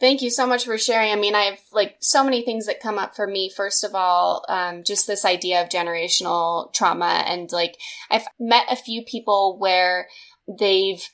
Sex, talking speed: female, 205 wpm